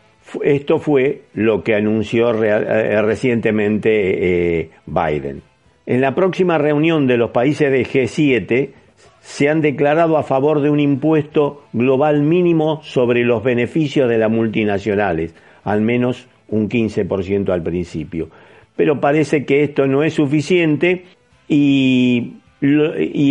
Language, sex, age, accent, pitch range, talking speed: Spanish, male, 50-69, Argentinian, 110-150 Hz, 125 wpm